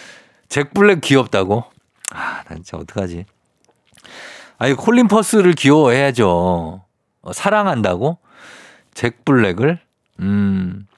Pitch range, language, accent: 105-165 Hz, Korean, native